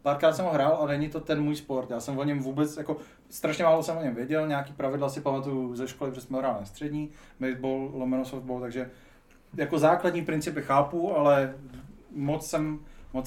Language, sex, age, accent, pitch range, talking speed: Czech, male, 30-49, native, 130-155 Hz, 205 wpm